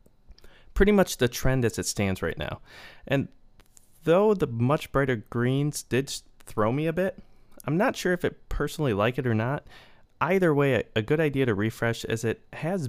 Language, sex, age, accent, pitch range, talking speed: English, male, 30-49, American, 105-135 Hz, 185 wpm